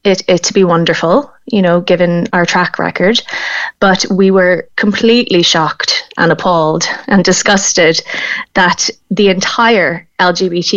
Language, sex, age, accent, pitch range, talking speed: English, female, 20-39, Irish, 170-190 Hz, 135 wpm